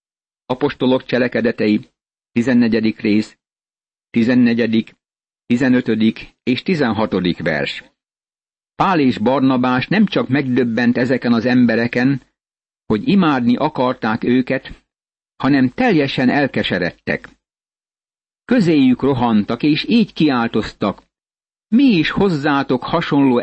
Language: Hungarian